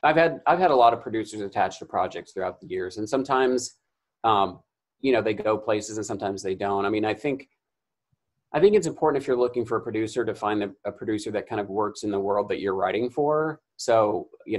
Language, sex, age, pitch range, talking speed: English, male, 30-49, 100-135 Hz, 240 wpm